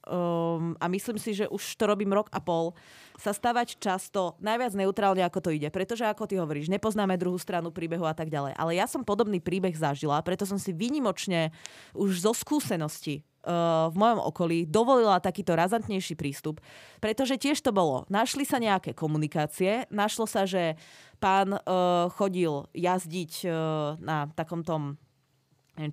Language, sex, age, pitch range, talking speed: Czech, female, 20-39, 165-210 Hz, 165 wpm